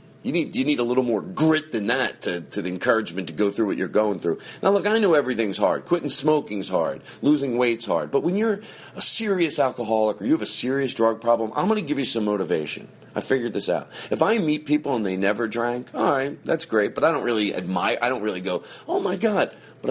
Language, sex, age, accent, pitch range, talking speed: English, male, 40-59, American, 110-165 Hz, 245 wpm